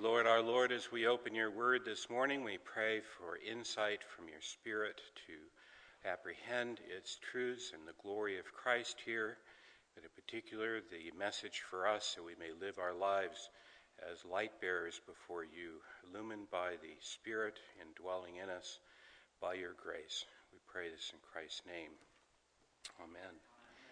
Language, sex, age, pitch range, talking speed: English, male, 60-79, 100-125 Hz, 160 wpm